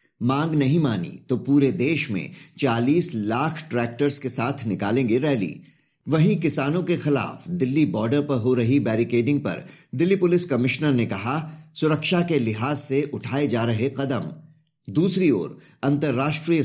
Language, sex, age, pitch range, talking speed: Hindi, male, 50-69, 130-155 Hz, 135 wpm